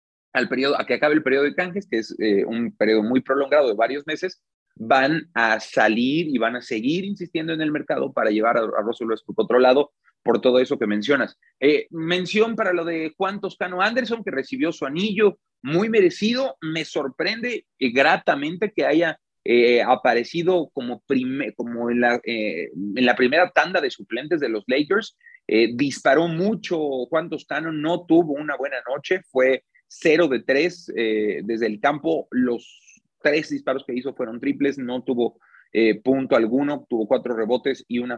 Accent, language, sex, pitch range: Mexican, Spanish, male, 125-175 Hz